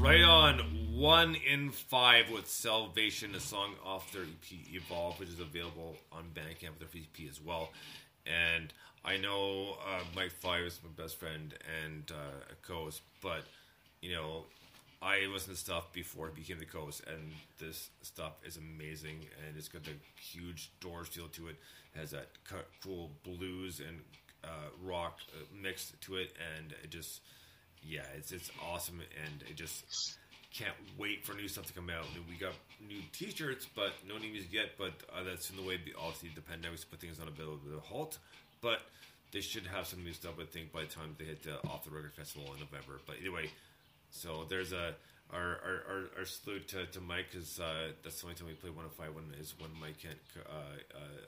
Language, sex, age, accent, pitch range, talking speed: English, male, 30-49, American, 80-95 Hz, 200 wpm